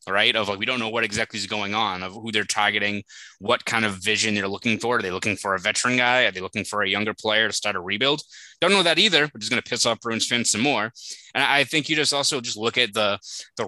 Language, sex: English, male